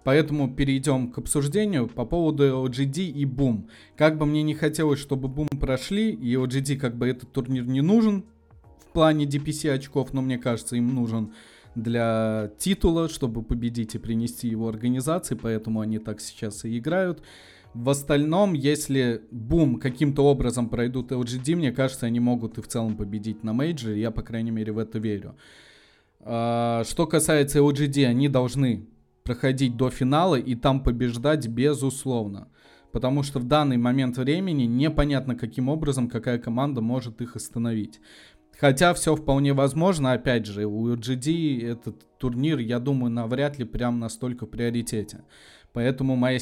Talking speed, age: 155 wpm, 20-39